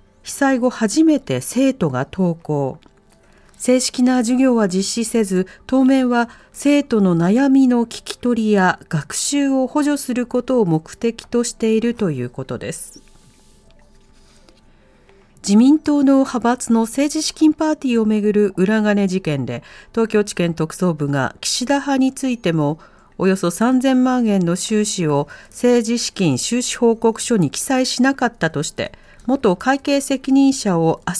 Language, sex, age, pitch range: Japanese, female, 40-59, 180-255 Hz